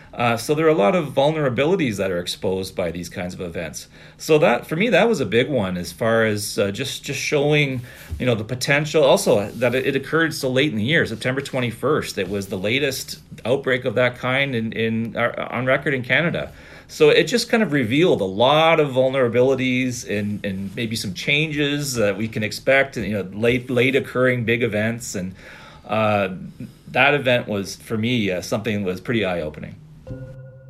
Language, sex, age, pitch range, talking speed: English, male, 40-59, 105-135 Hz, 195 wpm